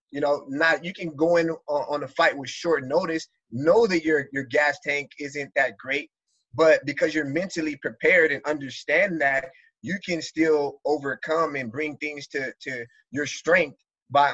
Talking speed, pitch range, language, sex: 175 wpm, 135-160 Hz, English, male